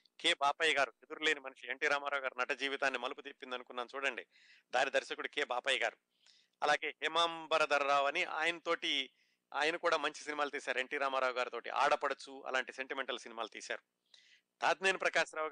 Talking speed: 150 wpm